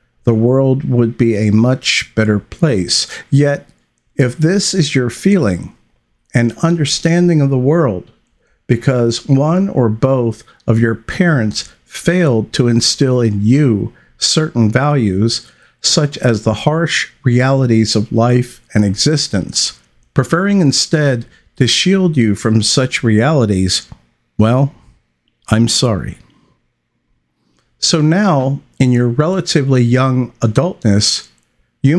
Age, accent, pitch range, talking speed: 50-69, American, 110-140 Hz, 115 wpm